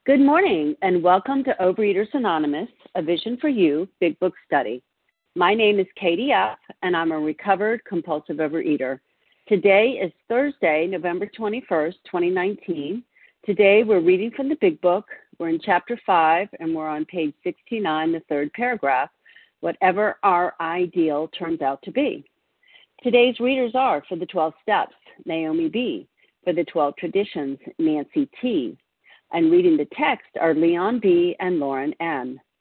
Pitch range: 160-220 Hz